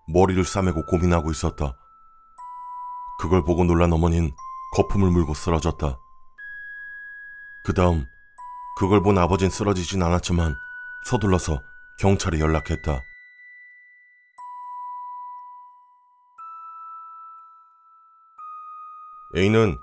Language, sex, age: Korean, male, 40-59